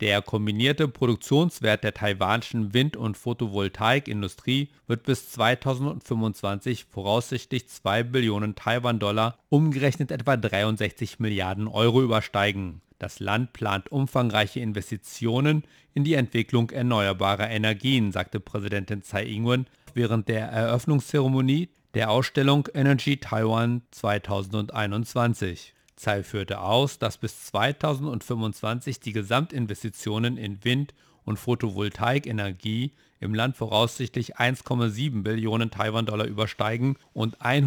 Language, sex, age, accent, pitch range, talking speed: German, male, 50-69, German, 105-130 Hz, 100 wpm